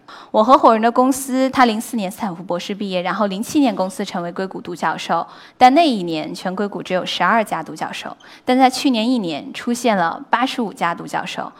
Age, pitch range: 10-29, 185-255 Hz